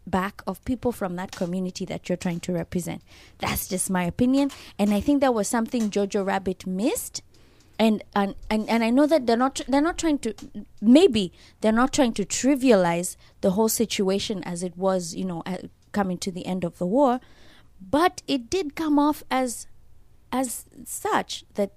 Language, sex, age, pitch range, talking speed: English, female, 20-39, 175-225 Hz, 185 wpm